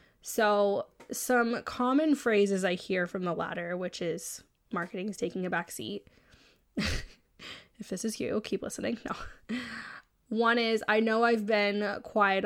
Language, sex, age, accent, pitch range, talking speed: English, female, 10-29, American, 190-230 Hz, 150 wpm